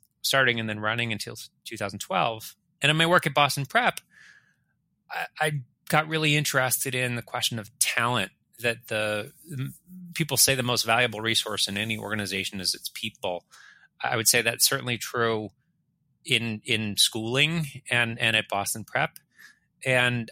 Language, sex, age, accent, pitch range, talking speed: English, male, 30-49, American, 105-130 Hz, 155 wpm